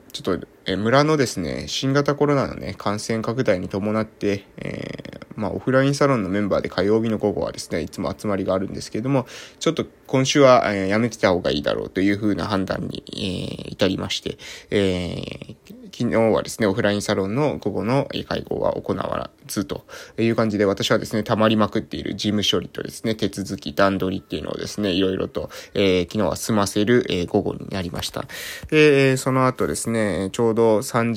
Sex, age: male, 20-39